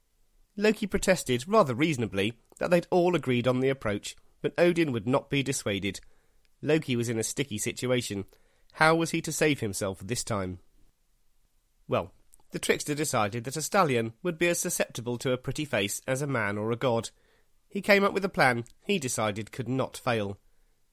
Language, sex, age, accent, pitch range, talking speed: English, male, 30-49, British, 115-155 Hz, 180 wpm